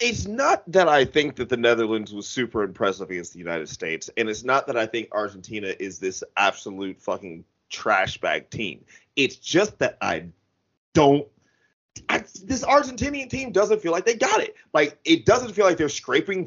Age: 30-49